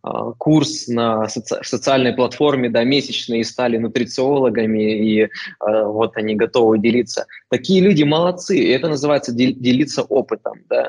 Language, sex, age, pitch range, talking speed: Russian, male, 20-39, 110-130 Hz, 130 wpm